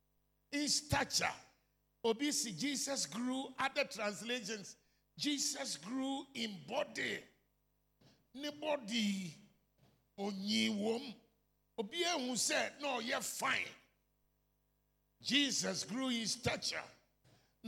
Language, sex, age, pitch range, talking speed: English, male, 50-69, 205-275 Hz, 70 wpm